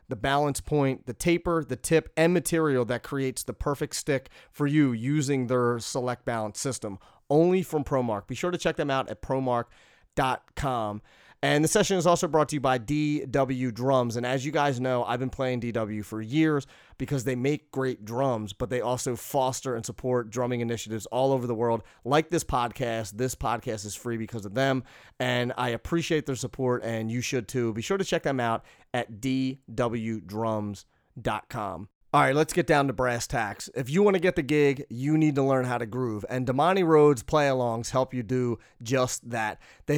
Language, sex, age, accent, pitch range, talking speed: English, male, 30-49, American, 120-145 Hz, 195 wpm